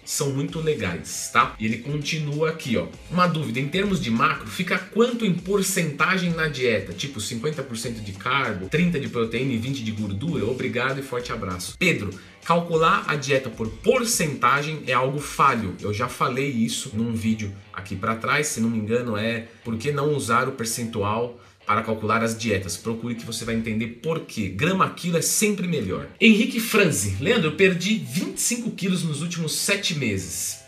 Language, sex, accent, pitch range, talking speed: Portuguese, male, Brazilian, 110-160 Hz, 175 wpm